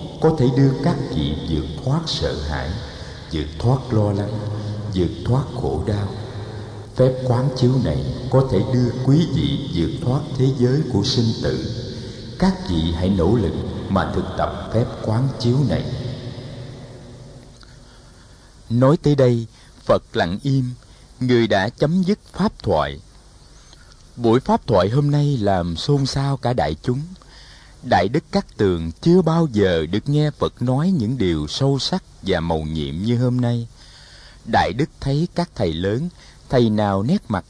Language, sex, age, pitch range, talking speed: Vietnamese, male, 60-79, 100-135 Hz, 160 wpm